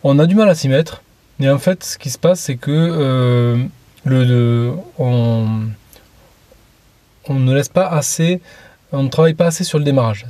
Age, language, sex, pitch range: 20-39, French, male, 130-165 Hz